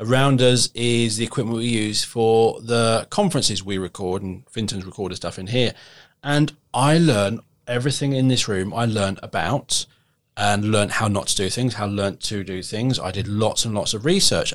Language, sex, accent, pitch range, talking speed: English, male, British, 105-140 Hz, 195 wpm